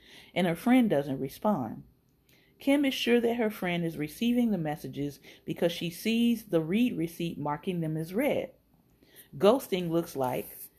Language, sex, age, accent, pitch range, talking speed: English, female, 40-59, American, 165-240 Hz, 155 wpm